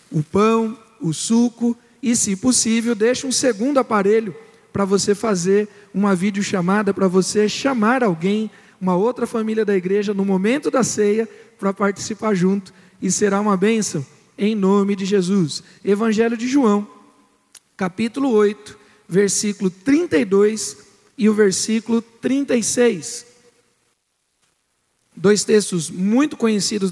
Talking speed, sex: 125 wpm, male